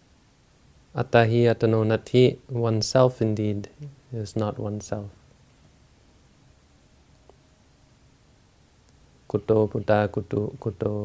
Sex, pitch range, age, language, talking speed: male, 105-120 Hz, 30-49, English, 60 wpm